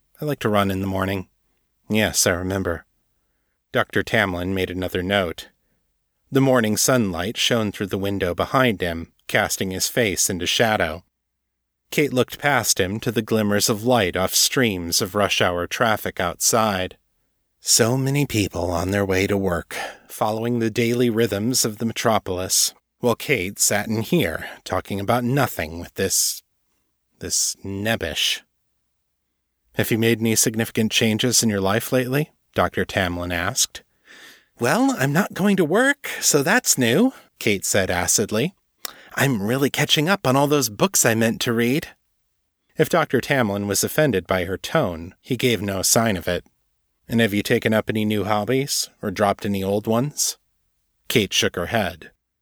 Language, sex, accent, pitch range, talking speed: English, male, American, 95-120 Hz, 160 wpm